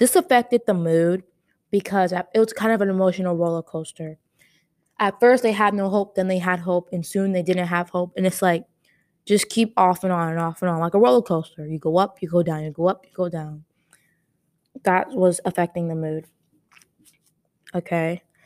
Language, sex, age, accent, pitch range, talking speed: Indonesian, female, 20-39, American, 170-205 Hz, 205 wpm